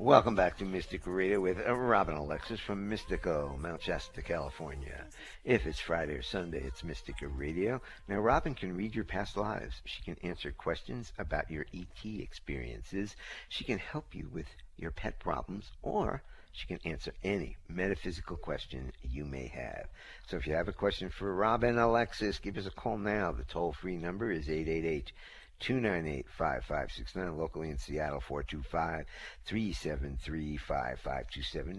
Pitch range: 75-95 Hz